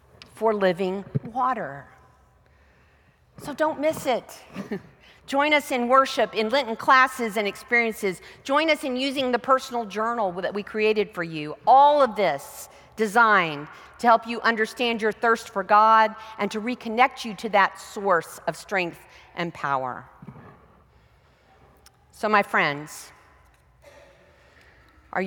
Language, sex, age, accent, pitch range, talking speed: English, female, 40-59, American, 190-240 Hz, 130 wpm